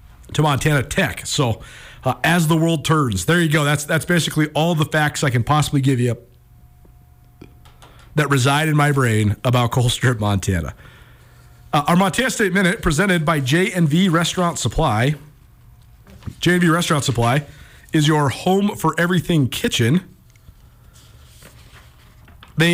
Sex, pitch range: male, 125-170 Hz